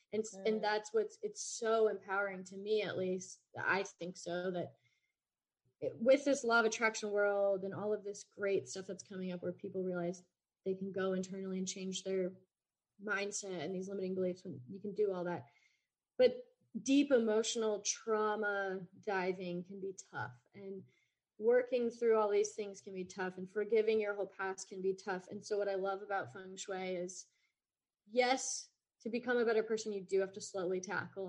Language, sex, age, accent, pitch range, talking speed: English, female, 30-49, American, 185-225 Hz, 190 wpm